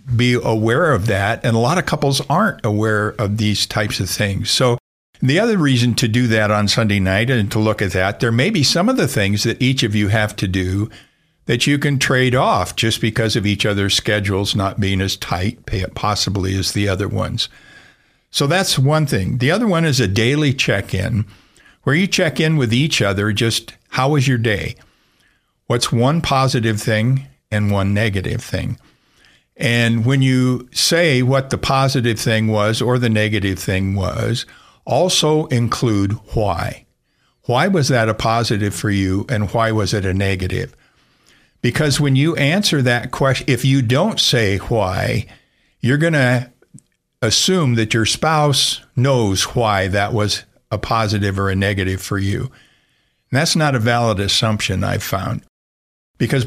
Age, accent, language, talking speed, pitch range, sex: 60-79, American, English, 175 wpm, 105-135 Hz, male